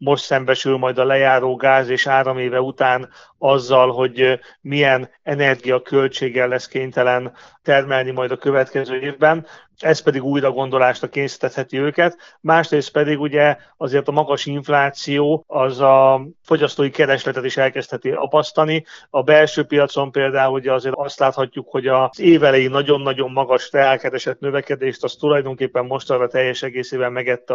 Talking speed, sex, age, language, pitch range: 135 wpm, male, 30-49, Hungarian, 130-145 Hz